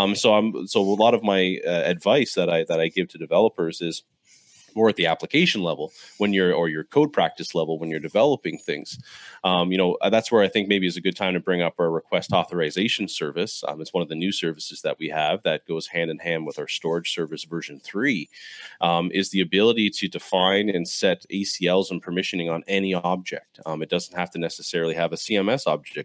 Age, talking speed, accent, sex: 30-49, 225 wpm, American, male